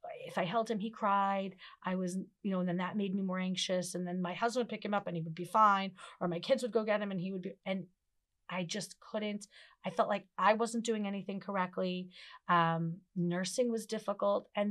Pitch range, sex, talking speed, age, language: 185-230 Hz, female, 235 wpm, 30-49, English